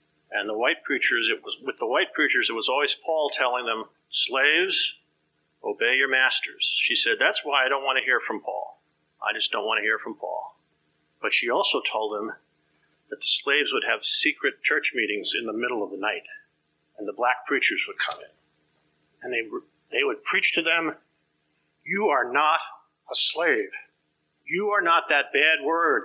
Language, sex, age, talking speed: English, male, 50-69, 190 wpm